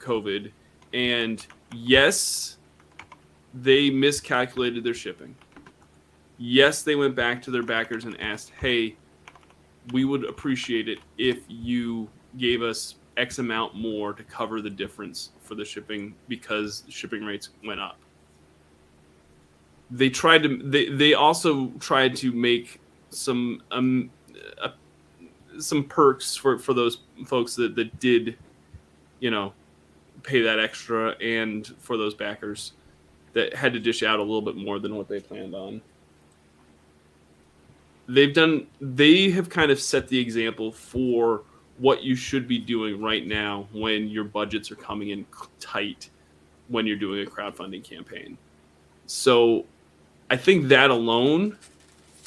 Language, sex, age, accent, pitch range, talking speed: English, male, 20-39, American, 75-125 Hz, 135 wpm